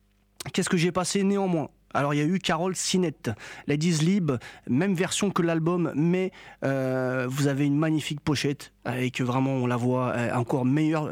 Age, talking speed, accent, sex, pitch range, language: 30-49, 180 wpm, French, male, 135-175 Hz, French